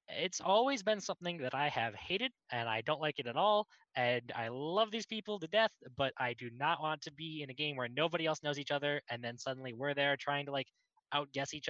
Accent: American